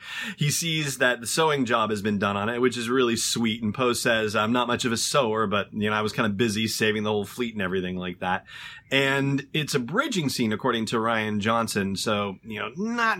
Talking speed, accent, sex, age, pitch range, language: 240 wpm, American, male, 30-49, 105-125 Hz, English